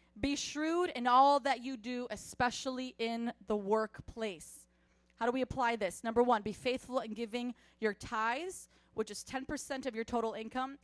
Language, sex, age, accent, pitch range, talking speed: English, female, 30-49, American, 225-275 Hz, 170 wpm